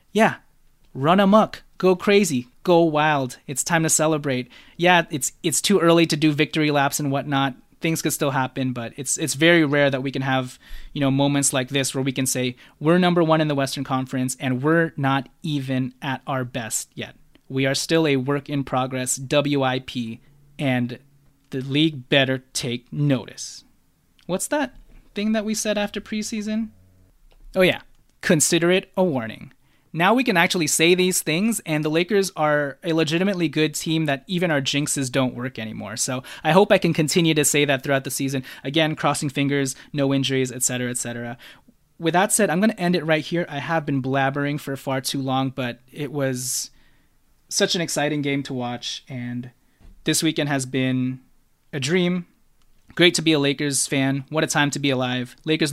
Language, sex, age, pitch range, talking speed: English, male, 20-39, 130-165 Hz, 190 wpm